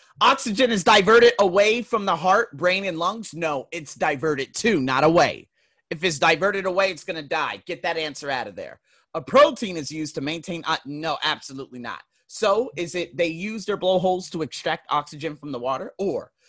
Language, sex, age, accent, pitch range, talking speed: English, male, 30-49, American, 135-185 Hz, 190 wpm